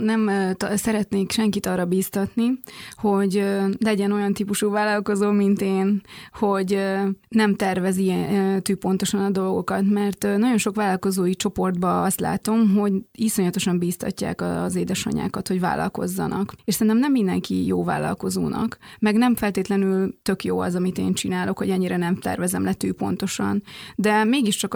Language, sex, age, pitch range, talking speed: Hungarian, female, 20-39, 190-220 Hz, 135 wpm